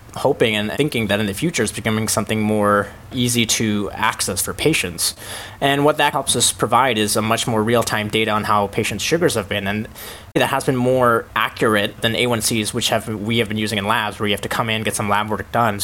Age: 20-39